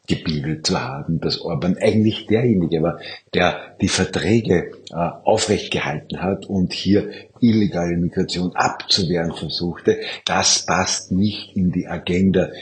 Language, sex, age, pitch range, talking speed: German, male, 50-69, 85-100 Hz, 130 wpm